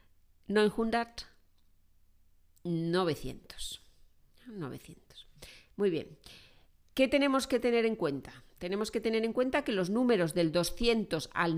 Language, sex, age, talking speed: Spanish, female, 40-59, 120 wpm